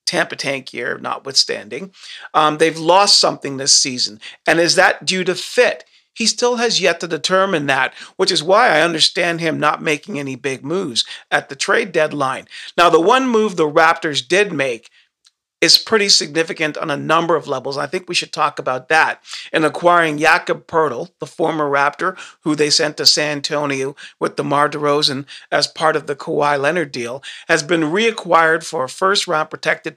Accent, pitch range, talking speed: American, 150-185 Hz, 180 wpm